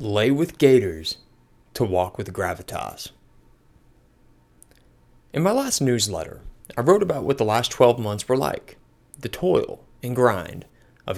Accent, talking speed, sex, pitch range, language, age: American, 145 wpm, male, 95-140 Hz, English, 30-49